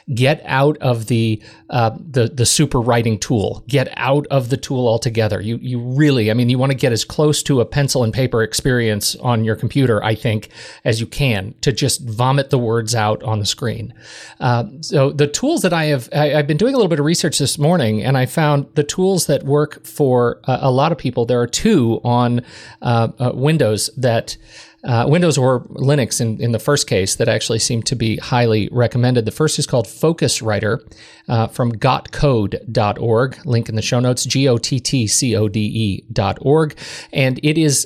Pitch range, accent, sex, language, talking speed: 115-145 Hz, American, male, English, 195 wpm